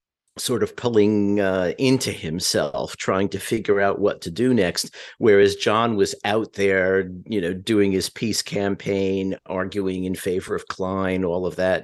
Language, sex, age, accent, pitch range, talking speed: English, male, 50-69, American, 90-115 Hz, 165 wpm